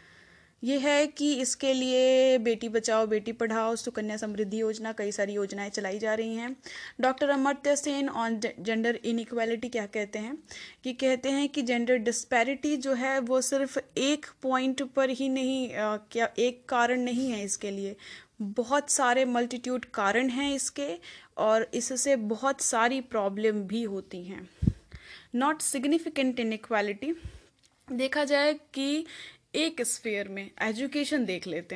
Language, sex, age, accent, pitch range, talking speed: Hindi, female, 10-29, native, 225-275 Hz, 145 wpm